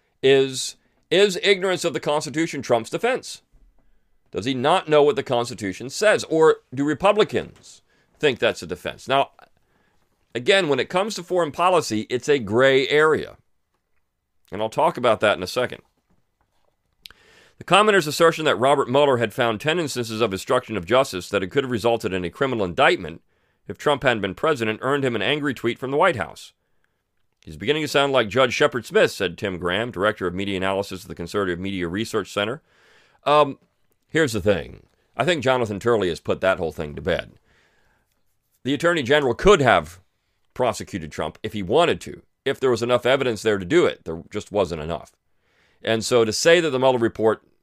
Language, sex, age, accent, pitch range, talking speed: English, male, 40-59, American, 100-145 Hz, 185 wpm